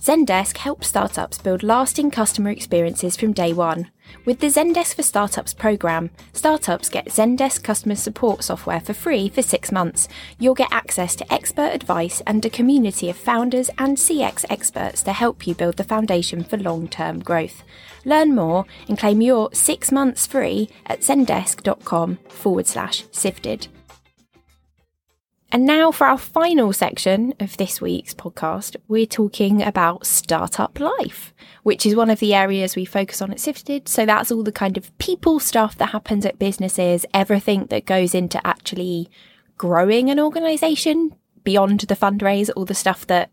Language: English